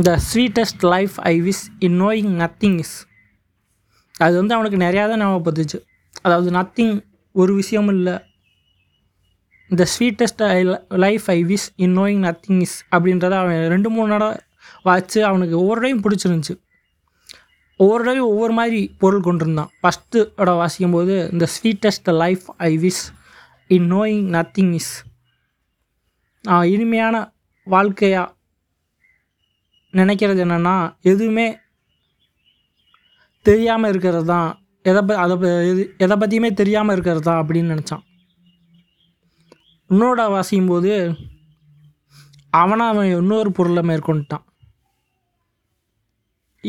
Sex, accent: male, native